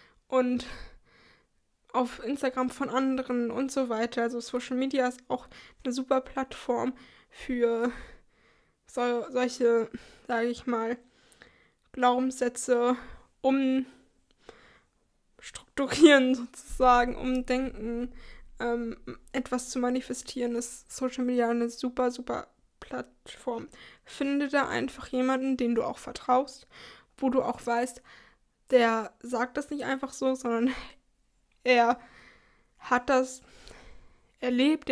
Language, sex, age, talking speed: German, female, 20-39, 100 wpm